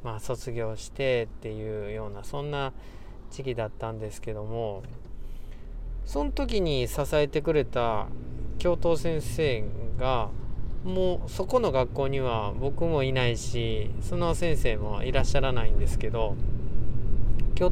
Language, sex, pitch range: Japanese, male, 115-140 Hz